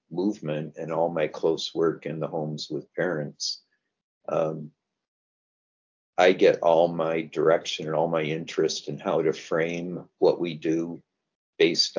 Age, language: 50-69, English